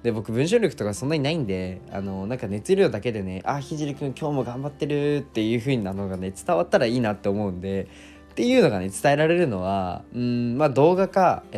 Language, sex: Japanese, male